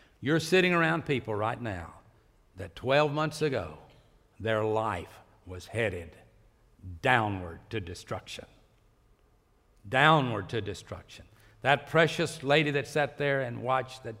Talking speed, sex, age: 125 wpm, male, 60-79